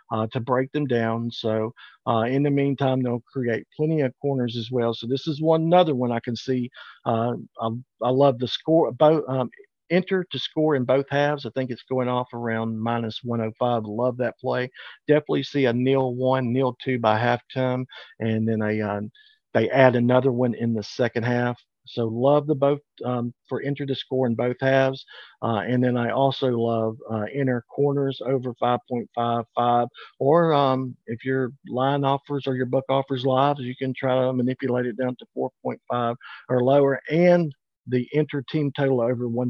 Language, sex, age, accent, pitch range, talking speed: English, male, 50-69, American, 120-135 Hz, 185 wpm